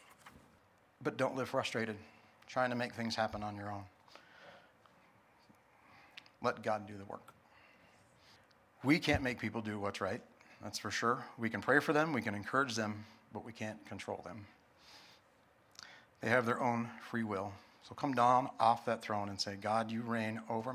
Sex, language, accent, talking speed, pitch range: male, English, American, 170 wpm, 105-125 Hz